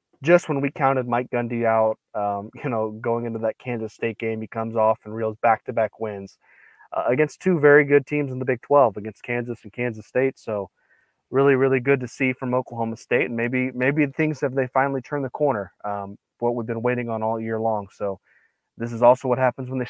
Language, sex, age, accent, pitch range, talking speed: English, male, 20-39, American, 115-140 Hz, 230 wpm